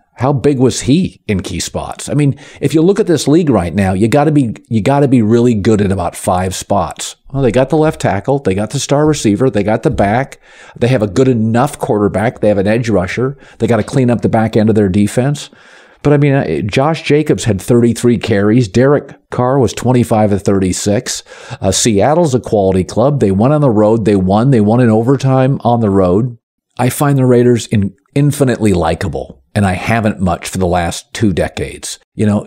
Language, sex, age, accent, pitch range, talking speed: English, male, 50-69, American, 100-125 Hz, 215 wpm